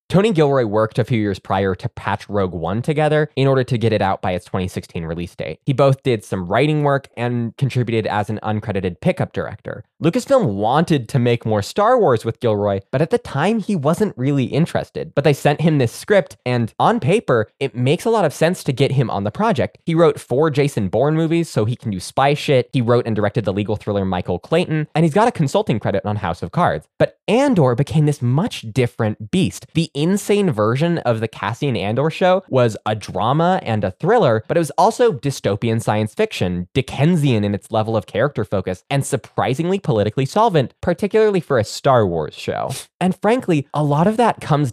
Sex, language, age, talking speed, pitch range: male, English, 20-39, 210 wpm, 105-155 Hz